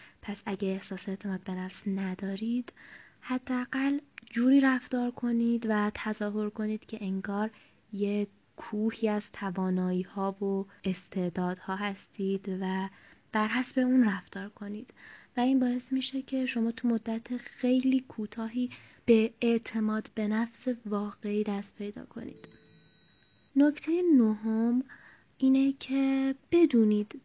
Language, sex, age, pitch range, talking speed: Persian, female, 20-39, 200-245 Hz, 115 wpm